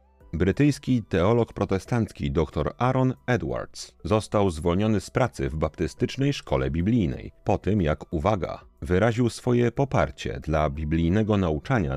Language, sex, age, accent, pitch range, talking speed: Polish, male, 40-59, native, 80-115 Hz, 120 wpm